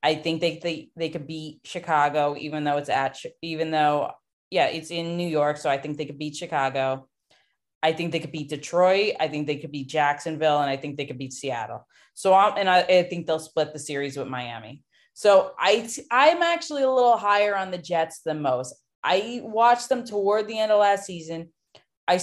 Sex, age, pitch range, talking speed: female, 20-39, 155-195 Hz, 210 wpm